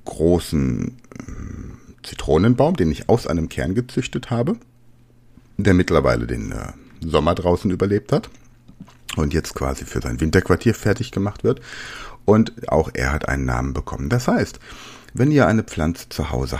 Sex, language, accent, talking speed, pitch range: male, German, German, 145 wpm, 80-120 Hz